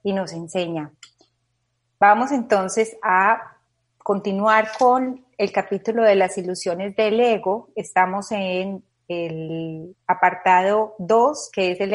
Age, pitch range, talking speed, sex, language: 30-49, 170-220 Hz, 115 wpm, female, Spanish